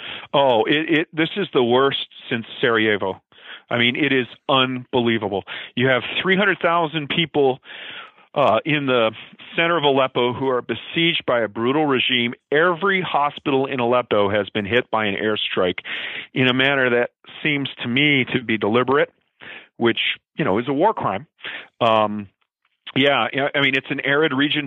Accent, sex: American, male